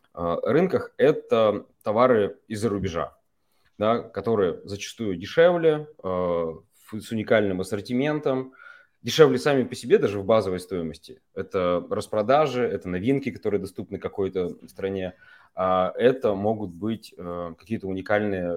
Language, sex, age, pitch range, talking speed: Russian, male, 20-39, 95-120 Hz, 110 wpm